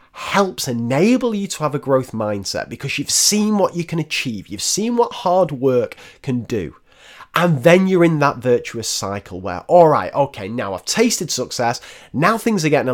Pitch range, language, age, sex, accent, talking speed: 110-185 Hz, English, 30-49, male, British, 195 wpm